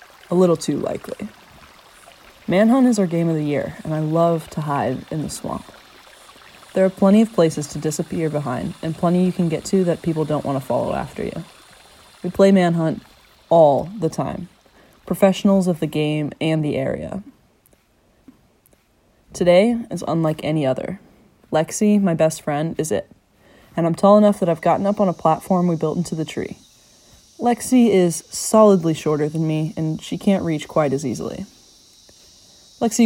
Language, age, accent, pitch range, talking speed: English, 20-39, American, 155-190 Hz, 170 wpm